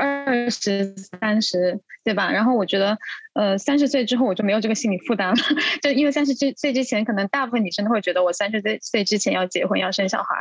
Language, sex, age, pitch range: Chinese, female, 20-39, 200-260 Hz